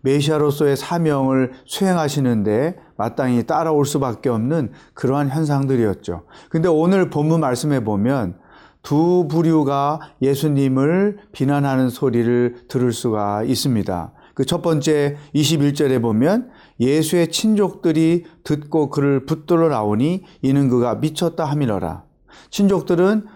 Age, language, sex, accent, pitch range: 30-49, Korean, male, native, 125-165 Hz